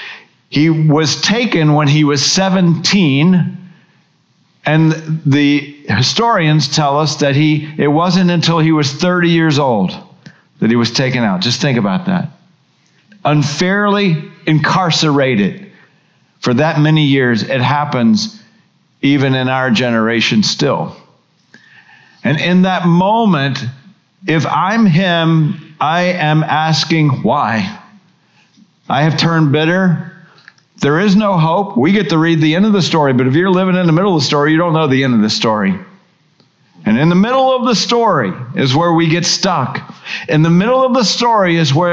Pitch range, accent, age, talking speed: 150-190 Hz, American, 50-69, 155 wpm